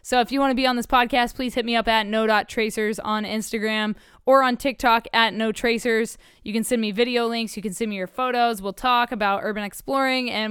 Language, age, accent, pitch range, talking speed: English, 10-29, American, 215-250 Hz, 235 wpm